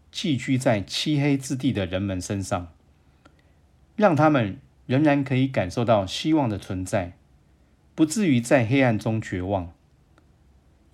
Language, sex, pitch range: Chinese, male, 85-120 Hz